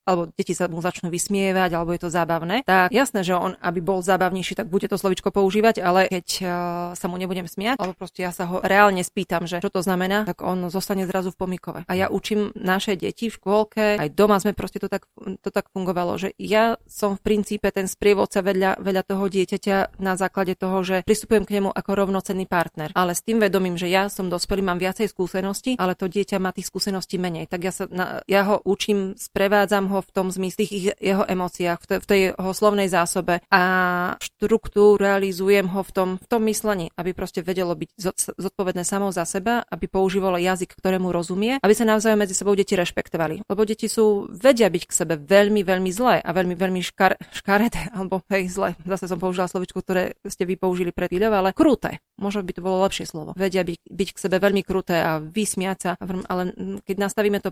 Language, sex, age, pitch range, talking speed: Slovak, female, 30-49, 185-200 Hz, 200 wpm